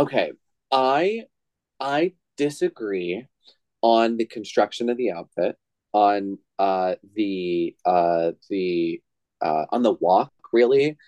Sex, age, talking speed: male, 30-49, 110 wpm